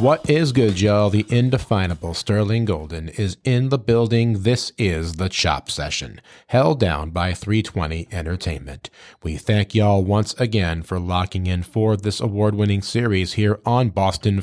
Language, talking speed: English, 155 wpm